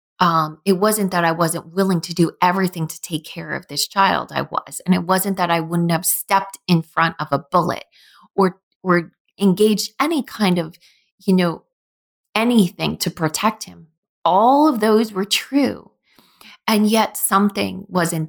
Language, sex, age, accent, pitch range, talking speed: English, female, 30-49, American, 170-215 Hz, 170 wpm